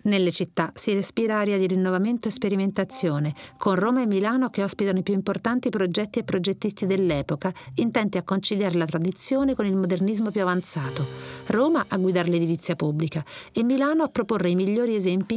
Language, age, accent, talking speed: Italian, 40-59, native, 170 wpm